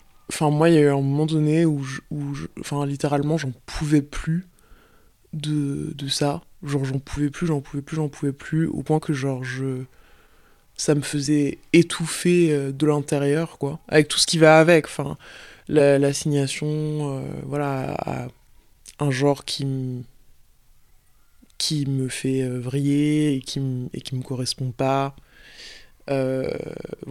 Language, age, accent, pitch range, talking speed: German, 20-39, French, 135-150 Hz, 155 wpm